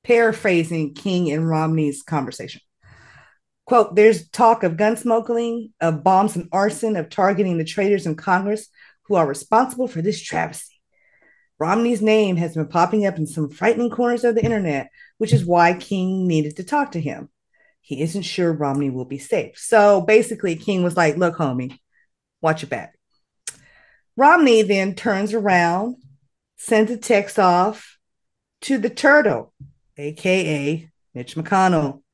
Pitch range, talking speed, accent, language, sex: 170-230 Hz, 150 wpm, American, English, female